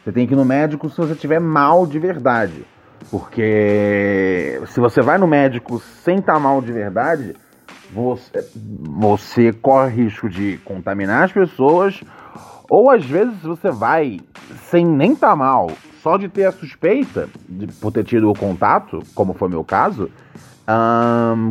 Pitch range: 110-175 Hz